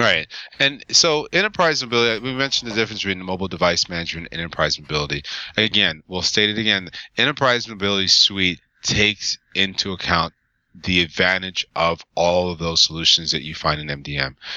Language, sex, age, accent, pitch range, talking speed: English, male, 30-49, American, 85-105 Hz, 160 wpm